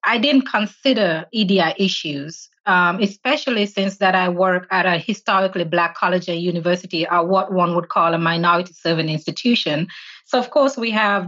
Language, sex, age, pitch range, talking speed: English, female, 30-49, 175-205 Hz, 165 wpm